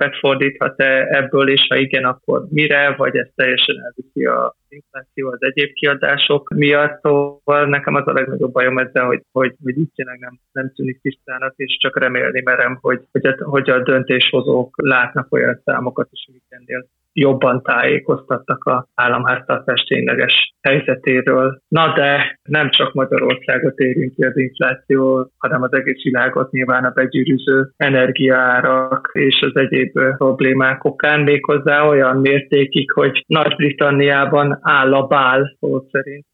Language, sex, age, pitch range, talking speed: Hungarian, male, 20-39, 130-145 Hz, 135 wpm